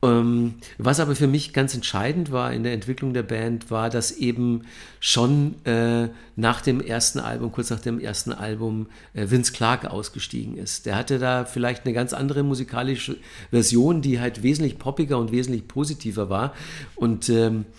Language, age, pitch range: German, 50-69, 115-140 Hz